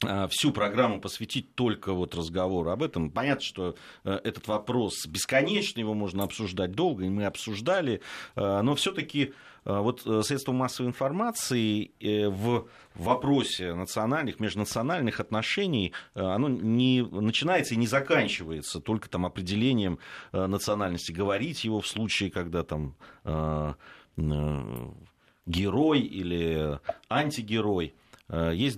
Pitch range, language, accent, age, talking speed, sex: 95-130 Hz, Russian, native, 30-49, 105 wpm, male